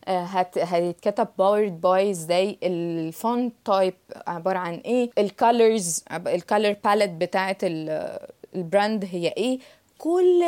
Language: English